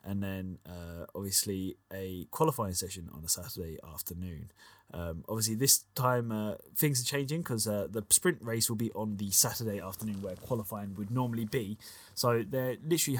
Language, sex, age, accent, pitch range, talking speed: English, male, 20-39, British, 100-125 Hz, 170 wpm